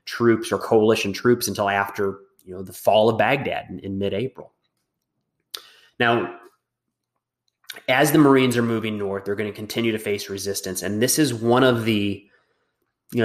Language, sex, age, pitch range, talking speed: English, male, 20-39, 100-115 Hz, 165 wpm